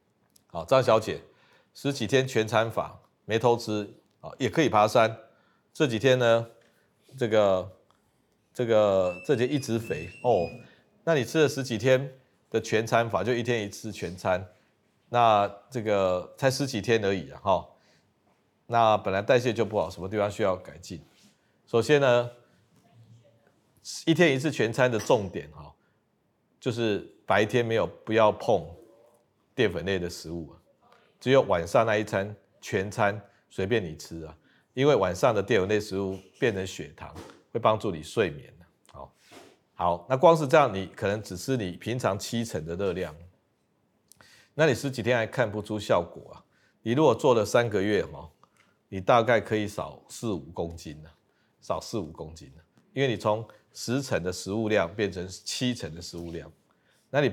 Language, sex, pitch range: Chinese, male, 95-125 Hz